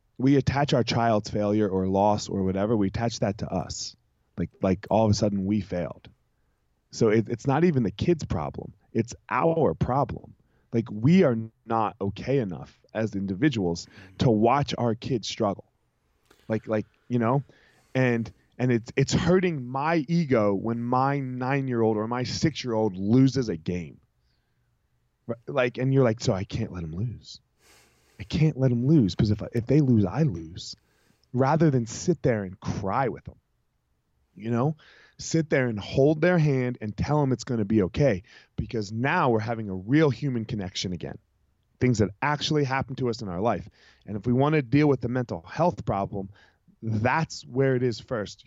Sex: male